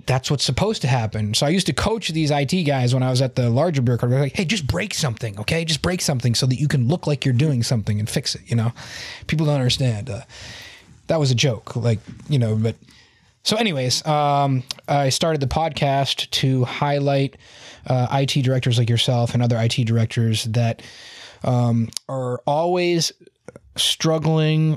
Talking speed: 195 wpm